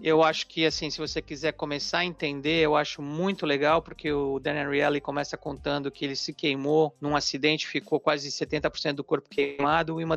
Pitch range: 150-180 Hz